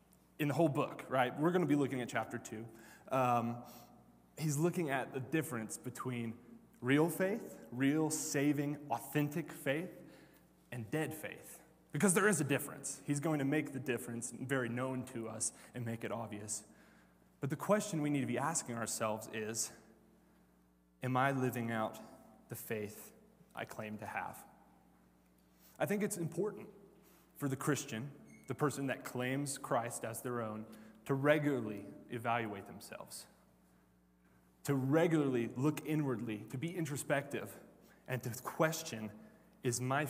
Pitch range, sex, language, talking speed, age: 110-155 Hz, male, English, 145 wpm, 20-39